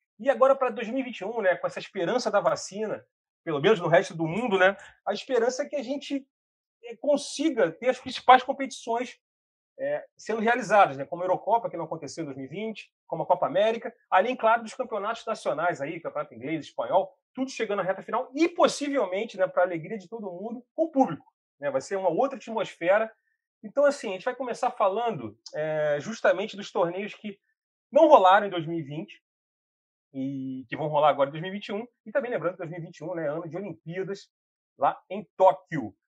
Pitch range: 175-250 Hz